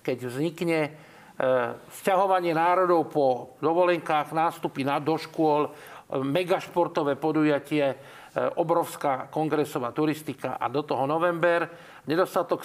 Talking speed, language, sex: 105 wpm, Slovak, male